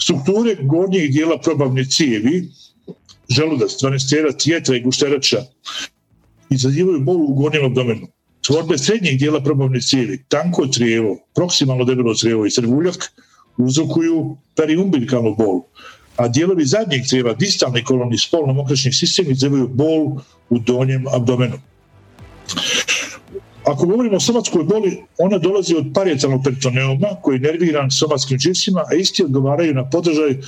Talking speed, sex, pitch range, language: 125 wpm, male, 130-165 Hz, Croatian